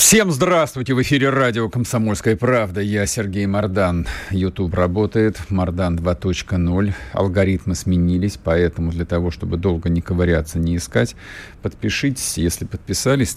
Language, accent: Russian, native